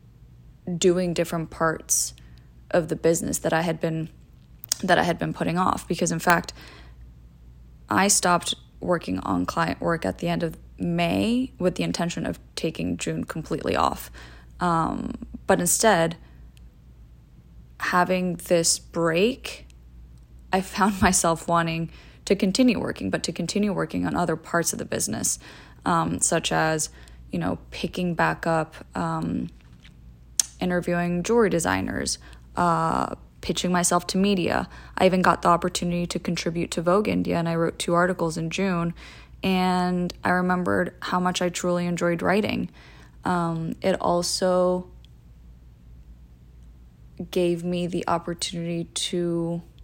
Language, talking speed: English, 135 wpm